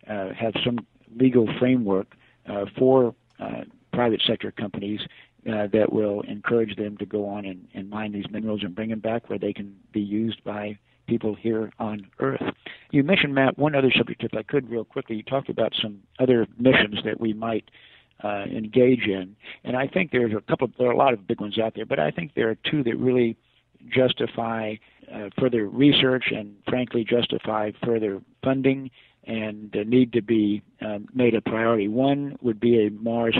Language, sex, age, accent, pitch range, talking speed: English, male, 50-69, American, 105-120 Hz, 190 wpm